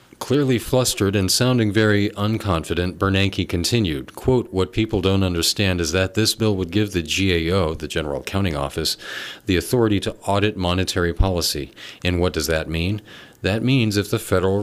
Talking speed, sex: 170 wpm, male